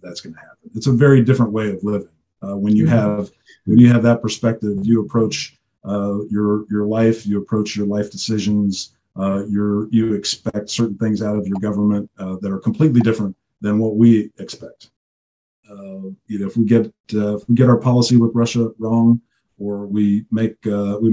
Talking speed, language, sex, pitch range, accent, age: 200 wpm, English, male, 105-120 Hz, American, 40-59